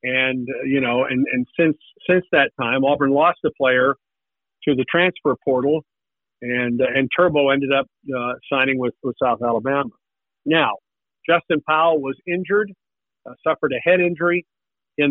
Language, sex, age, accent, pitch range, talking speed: English, male, 50-69, American, 130-155 Hz, 165 wpm